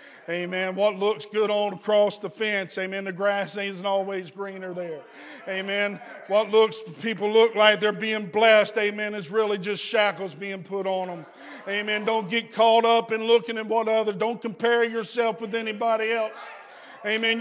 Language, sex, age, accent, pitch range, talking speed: English, male, 50-69, American, 180-225 Hz, 170 wpm